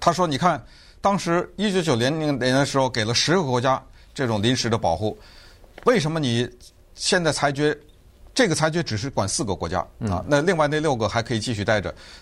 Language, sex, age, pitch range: Chinese, male, 50-69, 110-155 Hz